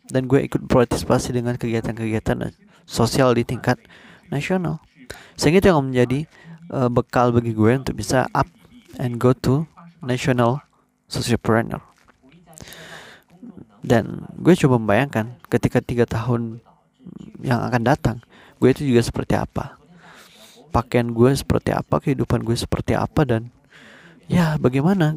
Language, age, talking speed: Indonesian, 20-39, 120 wpm